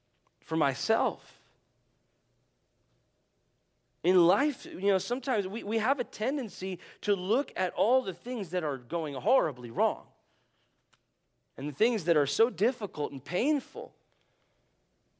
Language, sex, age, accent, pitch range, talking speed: English, male, 40-59, American, 145-220 Hz, 125 wpm